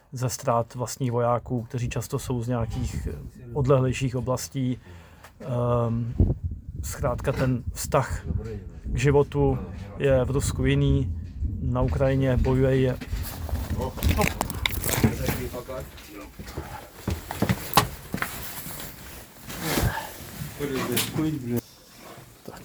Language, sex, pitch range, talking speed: Slovak, male, 115-130 Hz, 65 wpm